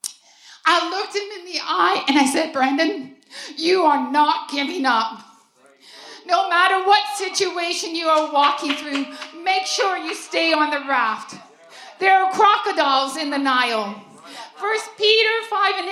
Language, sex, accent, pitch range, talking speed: English, female, American, 290-380 Hz, 150 wpm